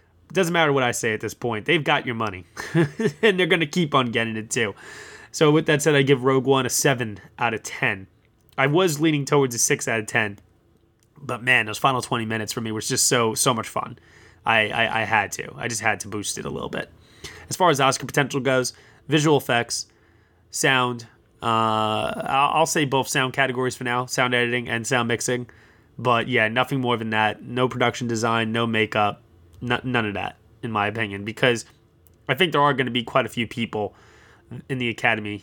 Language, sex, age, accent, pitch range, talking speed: English, male, 20-39, American, 110-135 Hz, 210 wpm